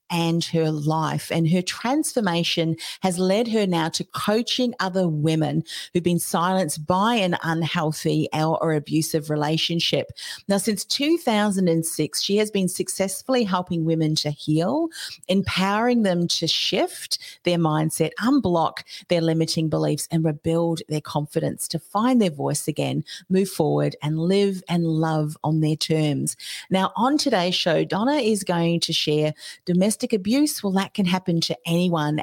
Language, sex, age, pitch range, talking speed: English, female, 40-59, 155-195 Hz, 145 wpm